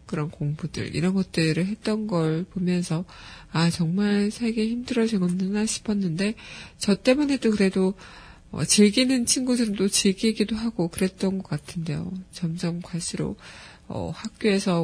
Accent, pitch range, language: native, 165-215 Hz, Korean